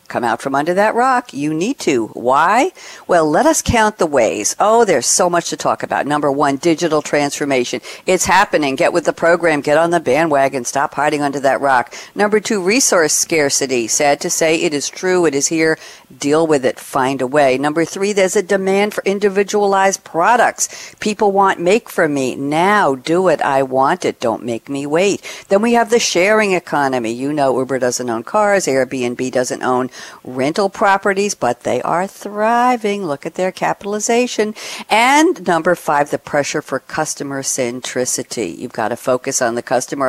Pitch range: 140-200 Hz